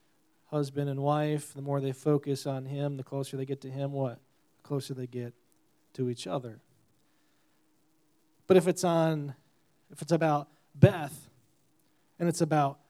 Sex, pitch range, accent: male, 140-155 Hz, American